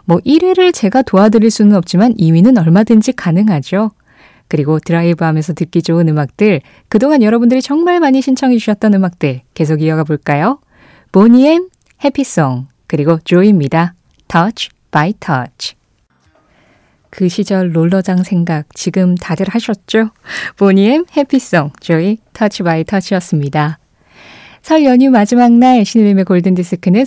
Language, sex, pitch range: Korean, female, 165-230 Hz